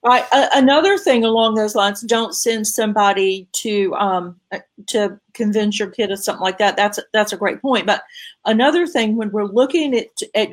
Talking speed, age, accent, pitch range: 180 wpm, 40-59, American, 195-235 Hz